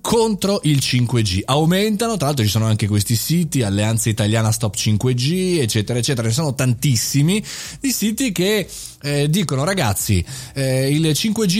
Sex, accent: male, native